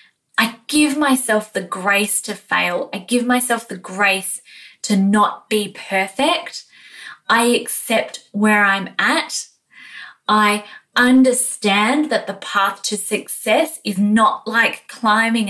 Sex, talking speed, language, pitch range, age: female, 125 wpm, English, 200-245 Hz, 20-39